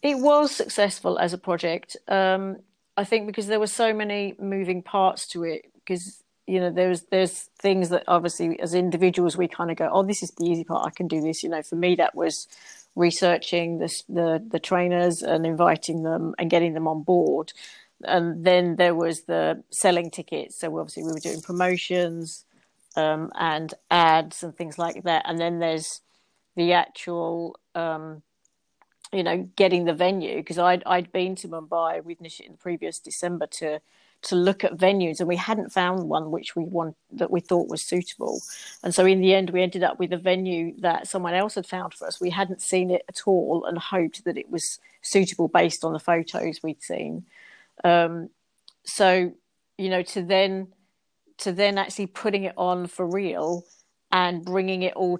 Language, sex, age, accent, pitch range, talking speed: English, female, 40-59, British, 170-190 Hz, 195 wpm